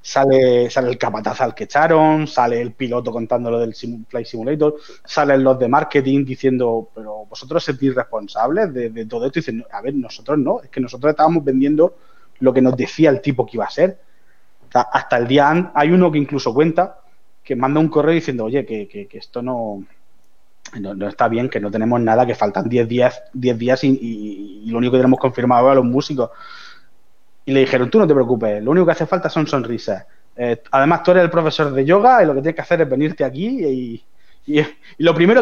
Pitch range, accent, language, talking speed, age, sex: 125-165 Hz, Spanish, Spanish, 220 wpm, 30-49, male